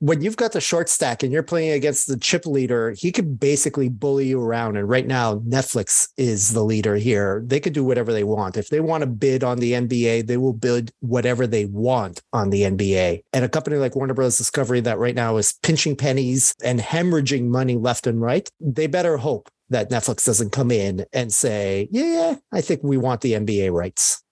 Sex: male